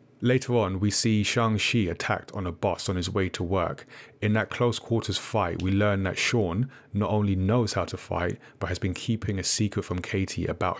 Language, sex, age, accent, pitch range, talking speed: English, male, 30-49, British, 95-115 Hz, 215 wpm